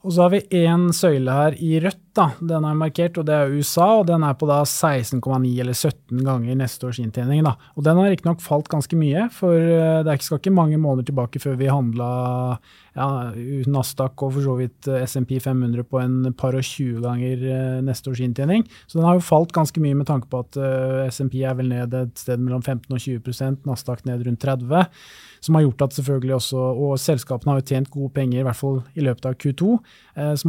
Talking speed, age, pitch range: 225 wpm, 20-39, 130-155 Hz